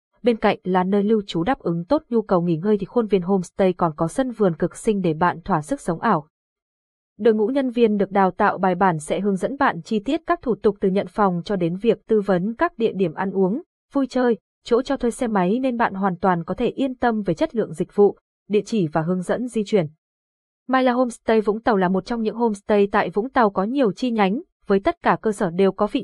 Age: 20-39